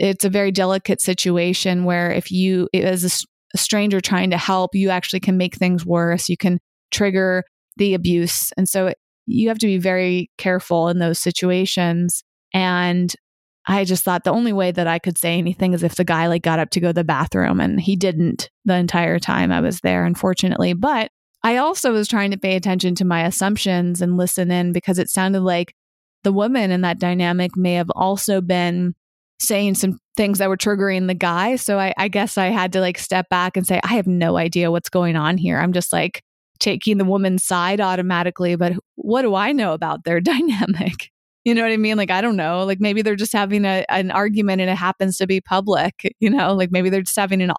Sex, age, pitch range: female, 20-39, 180-200 Hz